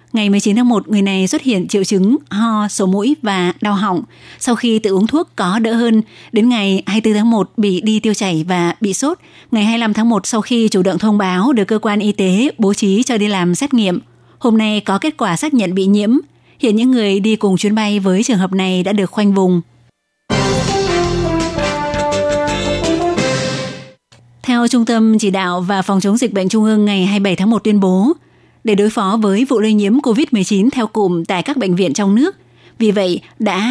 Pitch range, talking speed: 190-225 Hz, 210 wpm